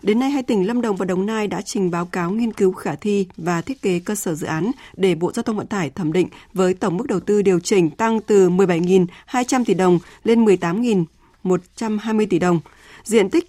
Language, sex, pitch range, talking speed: Vietnamese, female, 185-220 Hz, 220 wpm